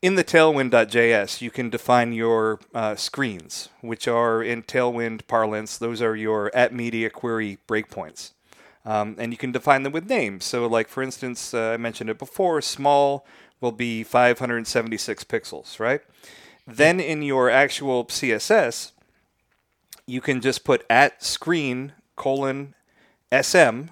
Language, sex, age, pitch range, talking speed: English, male, 40-59, 115-145 Hz, 140 wpm